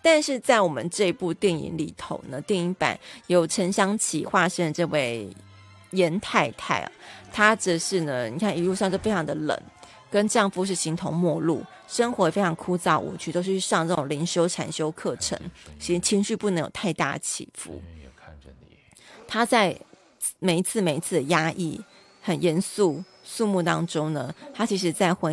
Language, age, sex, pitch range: Chinese, 30-49, female, 165-200 Hz